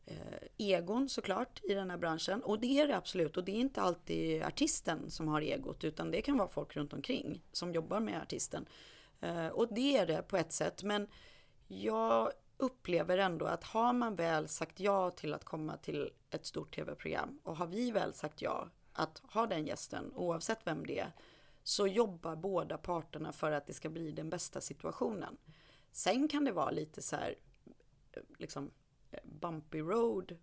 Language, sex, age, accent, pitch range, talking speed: Swedish, female, 40-59, native, 160-205 Hz, 180 wpm